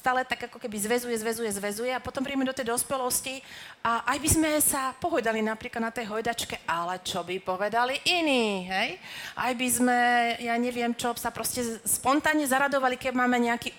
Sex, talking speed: female, 185 wpm